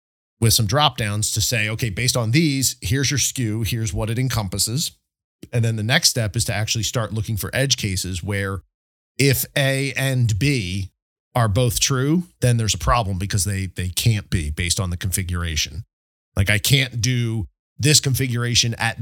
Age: 40-59